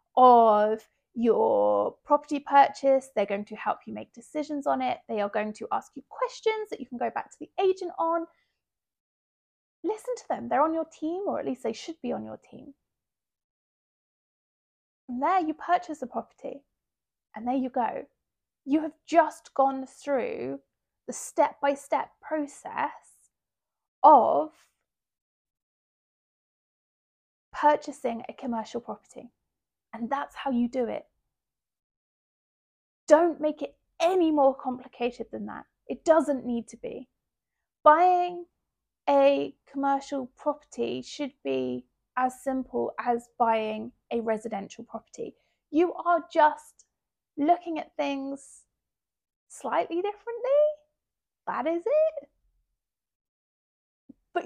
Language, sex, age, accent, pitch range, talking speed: English, female, 30-49, British, 240-315 Hz, 125 wpm